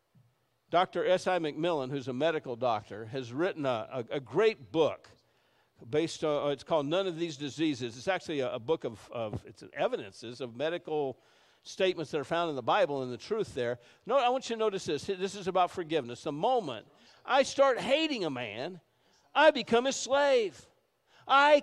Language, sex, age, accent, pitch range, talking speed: English, male, 50-69, American, 135-225 Hz, 185 wpm